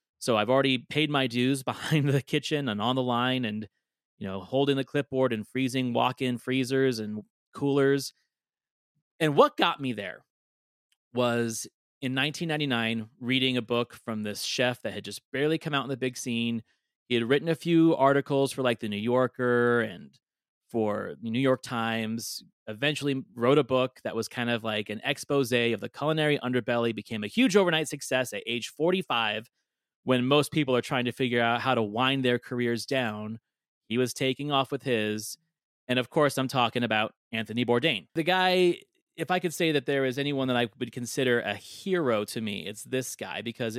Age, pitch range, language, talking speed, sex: 30-49, 115-140 Hz, English, 190 wpm, male